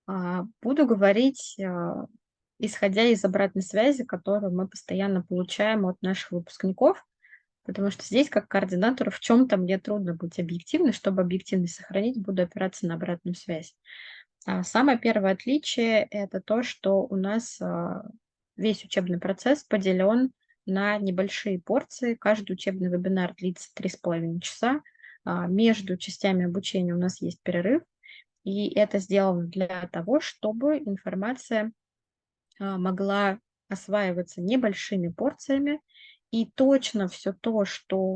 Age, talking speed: 20-39, 120 wpm